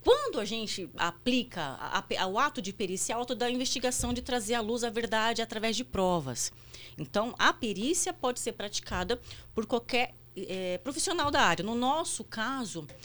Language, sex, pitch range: Portuguese, female, 175-250 Hz